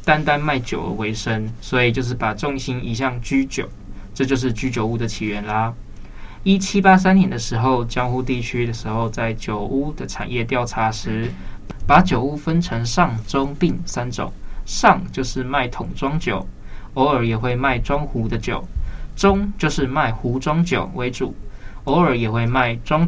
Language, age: Chinese, 20-39